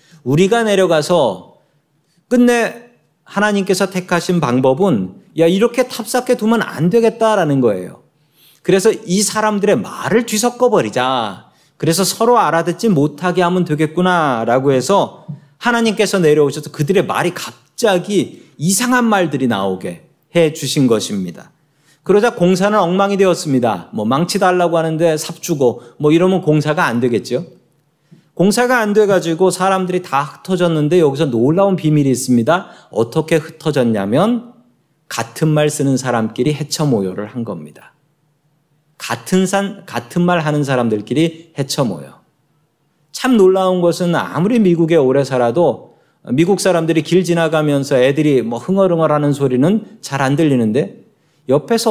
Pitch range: 150-195 Hz